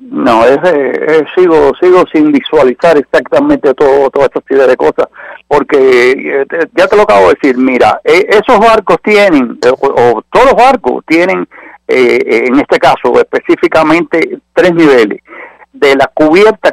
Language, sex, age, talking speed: English, male, 60-79, 160 wpm